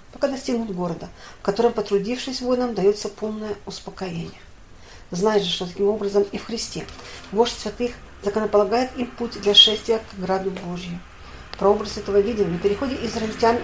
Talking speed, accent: 150 wpm, native